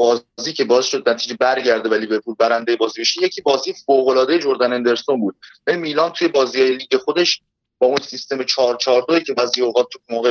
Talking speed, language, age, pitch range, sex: 180 wpm, Persian, 30-49, 120-160 Hz, male